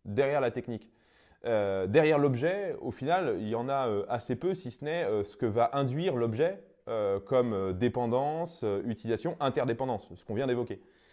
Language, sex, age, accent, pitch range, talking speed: French, male, 20-39, French, 115-160 Hz, 190 wpm